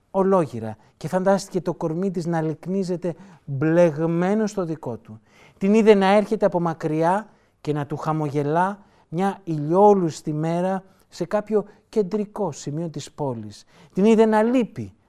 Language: Greek